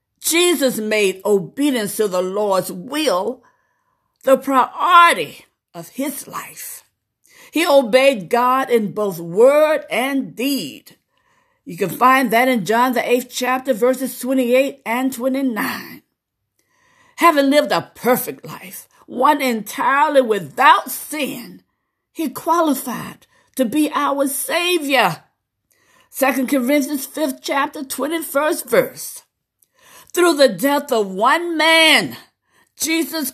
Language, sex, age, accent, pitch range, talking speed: English, female, 50-69, American, 245-310 Hz, 110 wpm